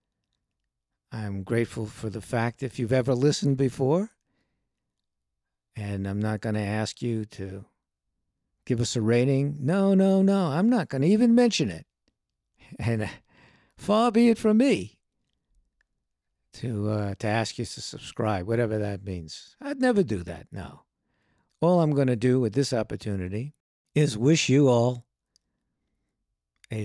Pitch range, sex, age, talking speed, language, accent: 100-135 Hz, male, 60-79, 145 wpm, English, American